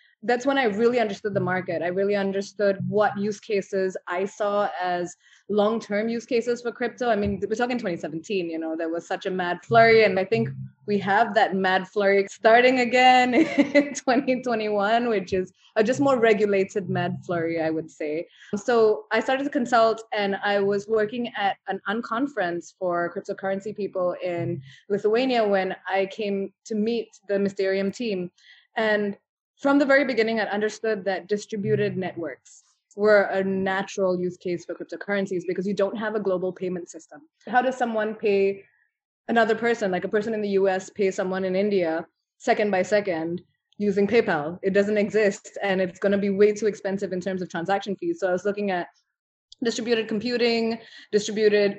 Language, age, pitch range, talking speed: English, 20-39, 185-225 Hz, 175 wpm